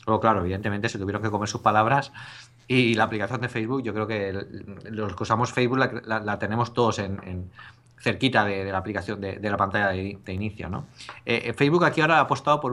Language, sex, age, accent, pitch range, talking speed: Spanish, male, 30-49, Spanish, 100-120 Hz, 225 wpm